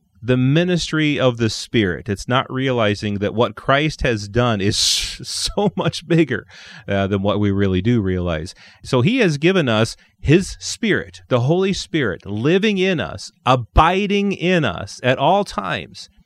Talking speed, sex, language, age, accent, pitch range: 160 wpm, male, English, 30-49, American, 105-140 Hz